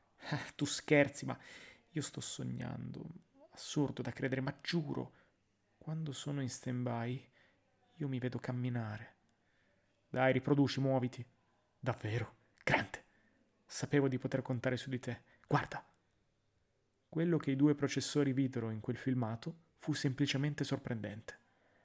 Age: 30-49